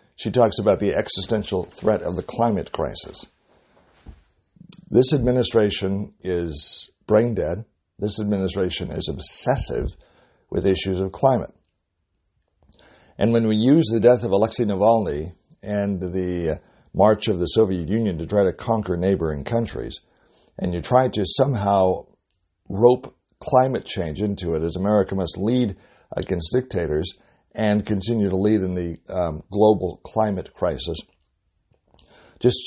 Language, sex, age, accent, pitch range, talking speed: English, male, 60-79, American, 90-110 Hz, 130 wpm